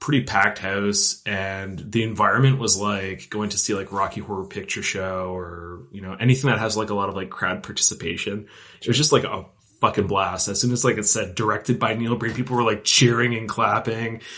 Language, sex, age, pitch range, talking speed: English, male, 20-39, 100-125 Hz, 215 wpm